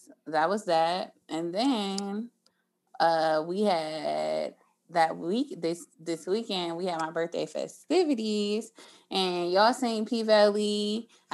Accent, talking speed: American, 125 wpm